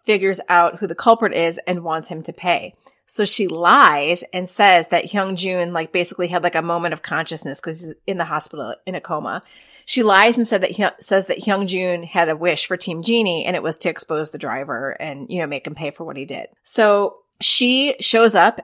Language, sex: English, female